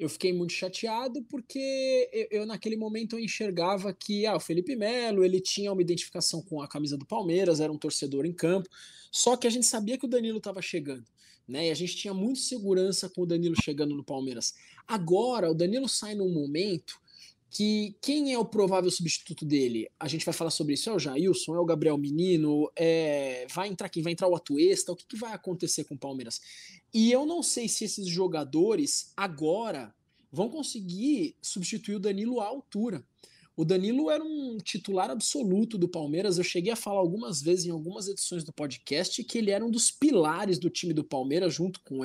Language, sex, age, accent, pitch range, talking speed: Portuguese, male, 20-39, Brazilian, 165-220 Hz, 195 wpm